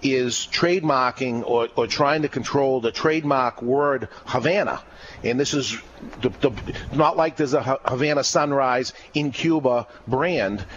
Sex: male